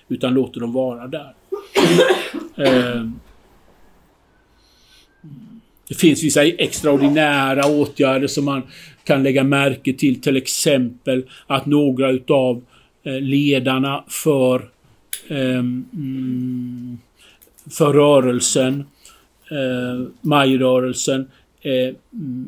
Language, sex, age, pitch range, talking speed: English, male, 50-69, 125-150 Hz, 70 wpm